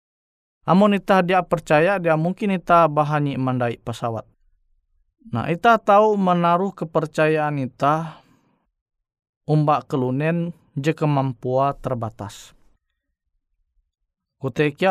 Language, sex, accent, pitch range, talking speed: Indonesian, male, native, 115-165 Hz, 85 wpm